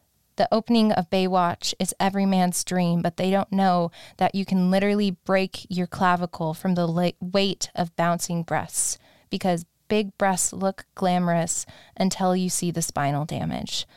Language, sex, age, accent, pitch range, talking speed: English, female, 20-39, American, 170-185 Hz, 155 wpm